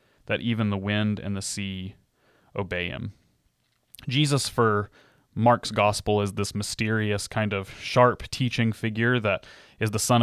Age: 30-49